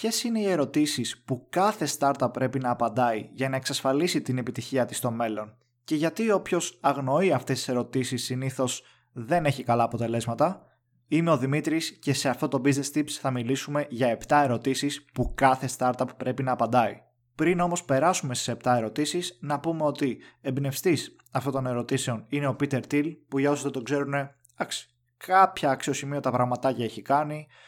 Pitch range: 125-145 Hz